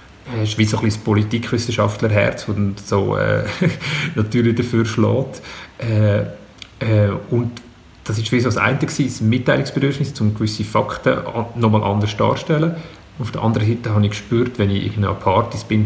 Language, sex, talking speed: German, male, 165 wpm